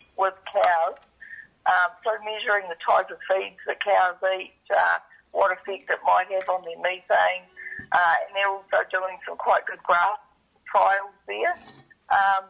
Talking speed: 160 wpm